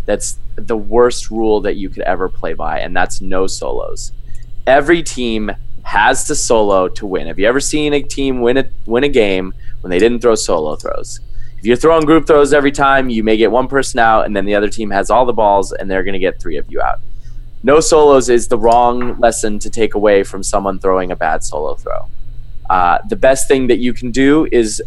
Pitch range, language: 110-125 Hz, English